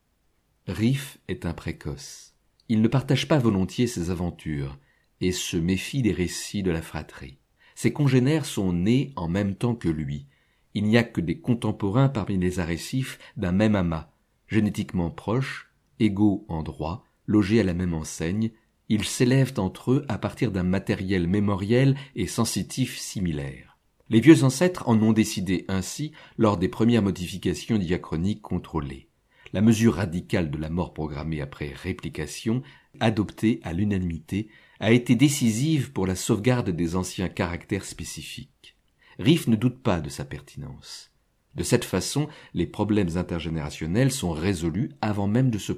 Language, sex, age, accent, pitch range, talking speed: French, male, 50-69, French, 85-115 Hz, 150 wpm